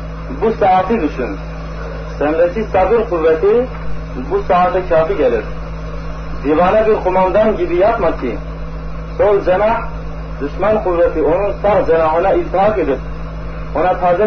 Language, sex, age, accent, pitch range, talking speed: Turkish, male, 40-59, native, 155-215 Hz, 115 wpm